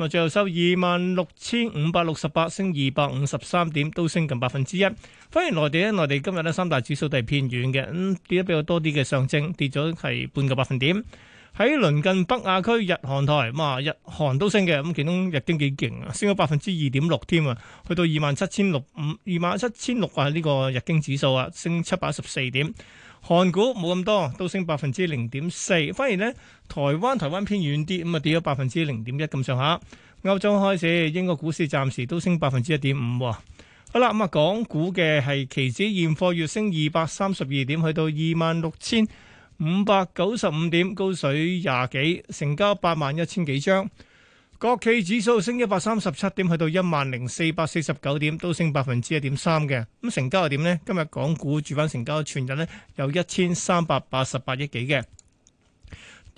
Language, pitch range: Chinese, 140-185 Hz